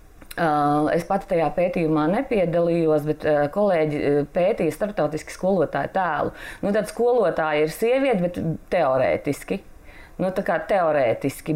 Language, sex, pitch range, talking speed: English, female, 150-185 Hz, 115 wpm